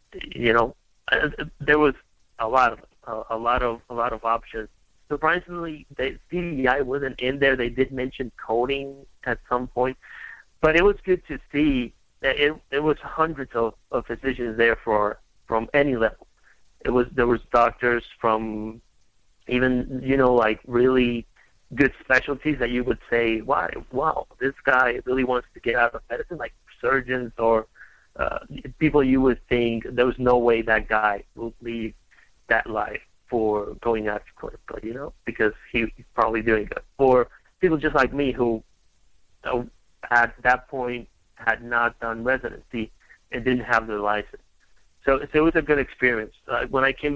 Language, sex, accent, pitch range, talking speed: English, male, American, 115-135 Hz, 175 wpm